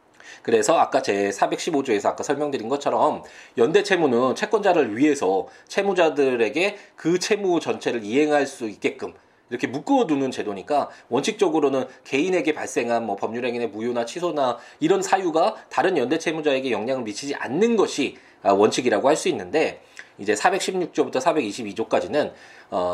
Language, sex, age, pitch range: Korean, male, 20-39, 115-170 Hz